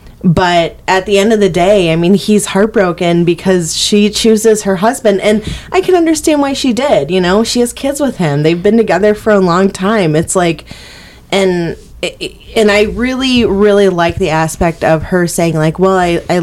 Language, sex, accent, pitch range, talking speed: English, female, American, 155-200 Hz, 195 wpm